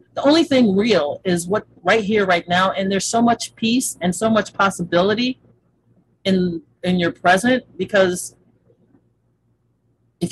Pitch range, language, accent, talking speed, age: 165-210 Hz, English, American, 145 wpm, 40-59